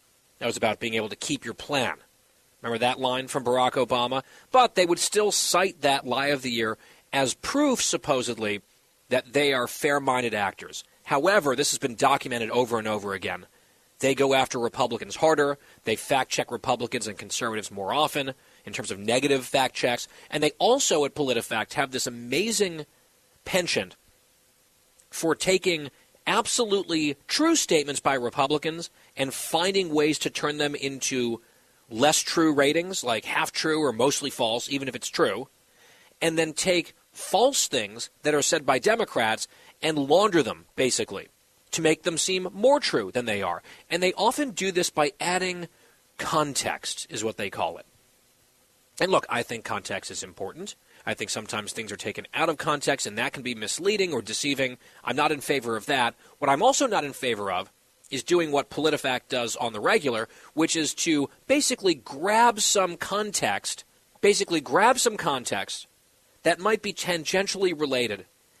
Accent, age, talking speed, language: American, 40-59, 165 wpm, English